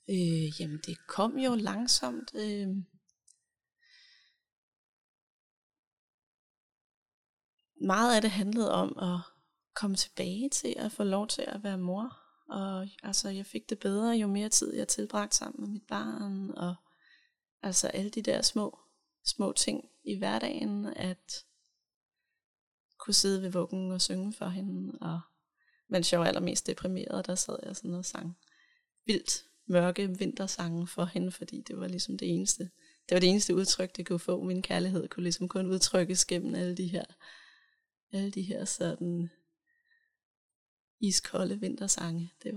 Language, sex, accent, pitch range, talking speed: Danish, female, native, 180-220 Hz, 150 wpm